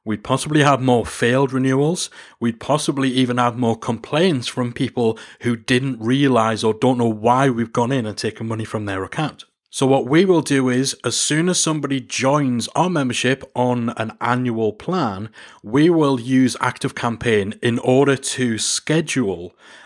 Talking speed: 165 wpm